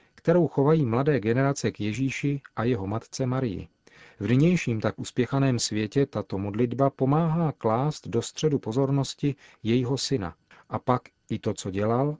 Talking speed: 150 wpm